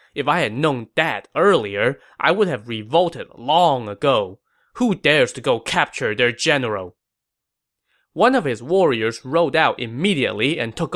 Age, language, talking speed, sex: 20-39, English, 155 wpm, male